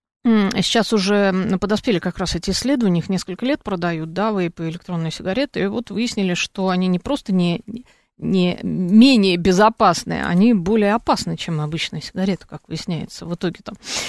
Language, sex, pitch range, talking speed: Russian, female, 180-230 Hz, 160 wpm